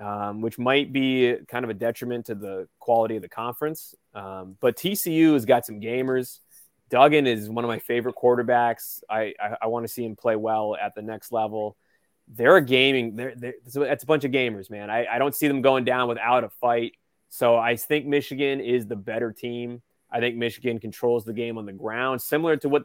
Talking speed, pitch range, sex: 210 wpm, 115-135 Hz, male